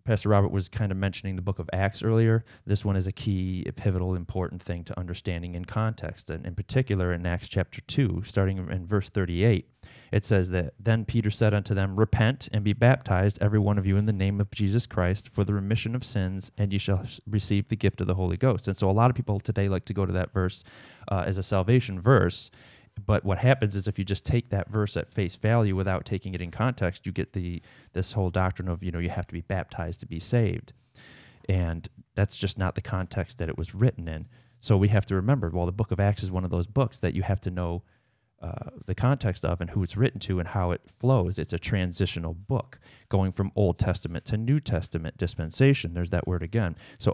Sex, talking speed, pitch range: male, 235 wpm, 90-110 Hz